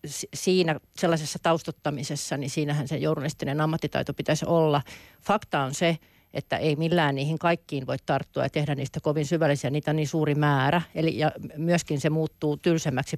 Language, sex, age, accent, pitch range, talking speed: Finnish, female, 40-59, native, 145-170 Hz, 165 wpm